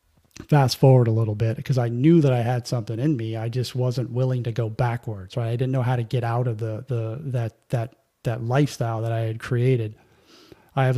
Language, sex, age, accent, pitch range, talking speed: English, male, 30-49, American, 115-130 Hz, 230 wpm